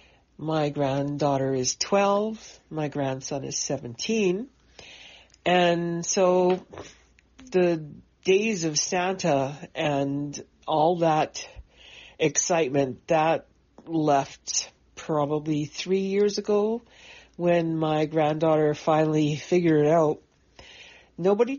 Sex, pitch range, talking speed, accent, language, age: female, 145-180 Hz, 90 wpm, American, English, 60-79